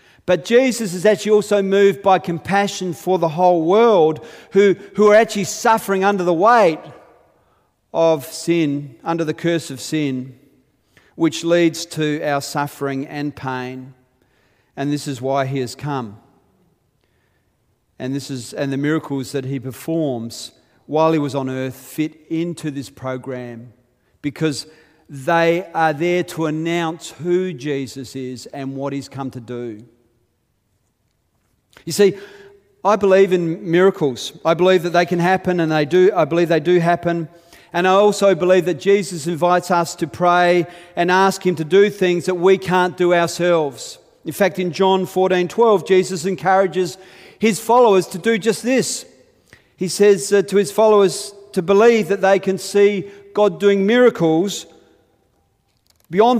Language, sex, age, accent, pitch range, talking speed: English, male, 40-59, Australian, 145-190 Hz, 155 wpm